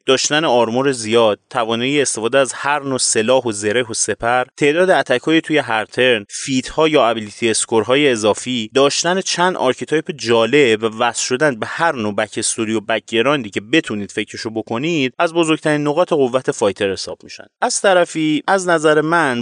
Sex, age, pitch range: male, 30-49, 115-170 Hz